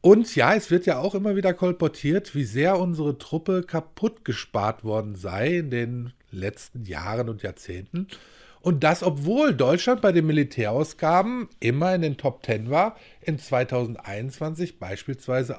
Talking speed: 150 wpm